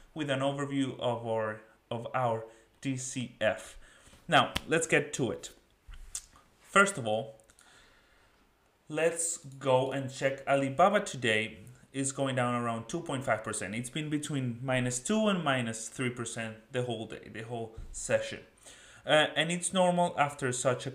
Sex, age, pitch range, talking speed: male, 30-49, 115-160 Hz, 135 wpm